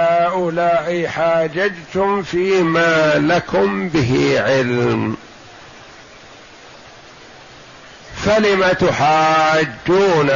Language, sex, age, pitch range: Arabic, male, 50-69, 140-175 Hz